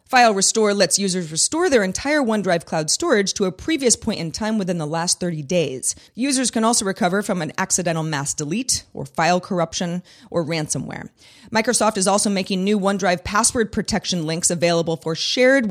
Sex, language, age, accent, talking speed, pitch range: female, English, 30-49, American, 180 wpm, 165-225 Hz